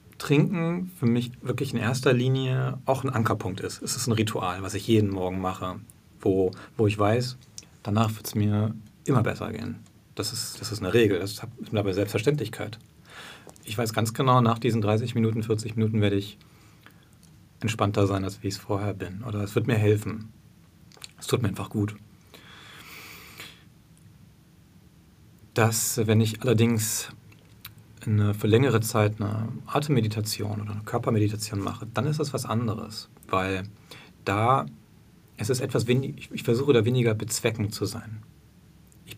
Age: 40-59